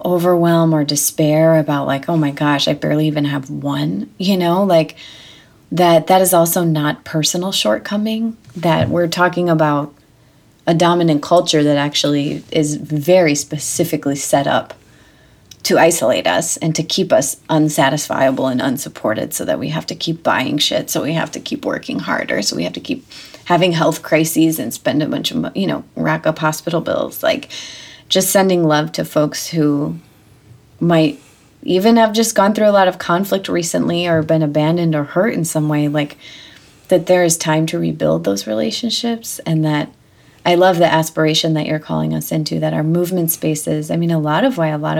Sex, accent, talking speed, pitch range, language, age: female, American, 185 wpm, 145-175 Hz, English, 30-49